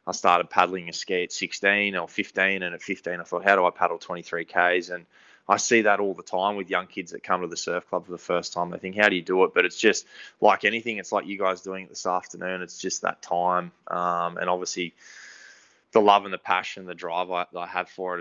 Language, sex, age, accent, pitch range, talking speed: English, male, 20-39, Australian, 90-100 Hz, 255 wpm